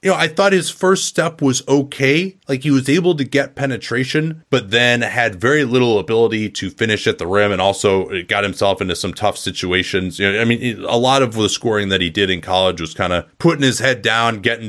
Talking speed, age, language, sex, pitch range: 235 wpm, 30-49, English, male, 95-125 Hz